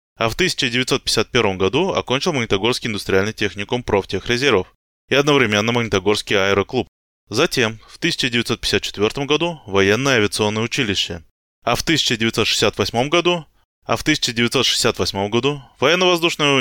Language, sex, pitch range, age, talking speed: Russian, male, 100-125 Hz, 20-39, 95 wpm